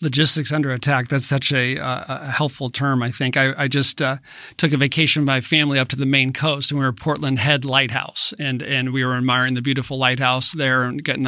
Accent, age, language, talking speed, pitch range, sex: American, 40-59, English, 240 wpm, 130-145 Hz, male